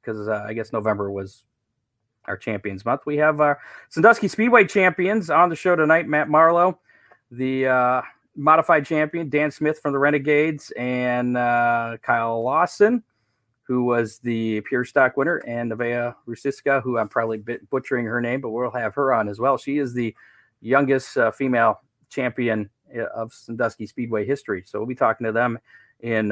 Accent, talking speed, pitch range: American, 170 wpm, 115-145 Hz